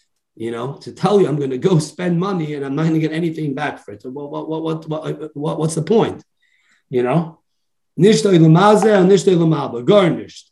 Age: 30-49